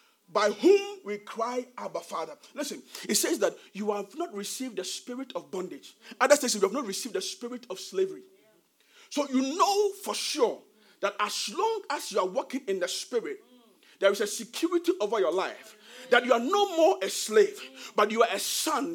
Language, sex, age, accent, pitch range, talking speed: English, male, 40-59, Nigerian, 210-345 Hz, 195 wpm